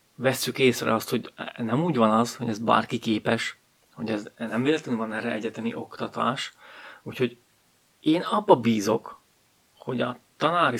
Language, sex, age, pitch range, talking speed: Hungarian, male, 30-49, 110-125 Hz, 150 wpm